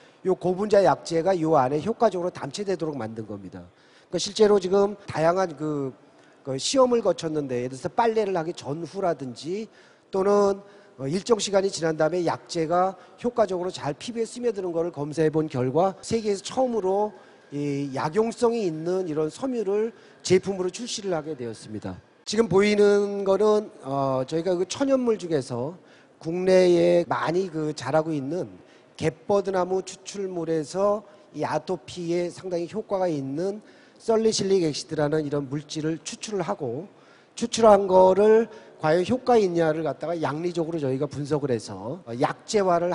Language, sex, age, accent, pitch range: Korean, male, 40-59, native, 150-205 Hz